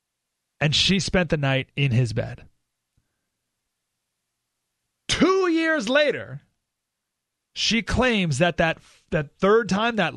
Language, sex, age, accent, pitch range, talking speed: English, male, 30-49, American, 135-185 Hz, 120 wpm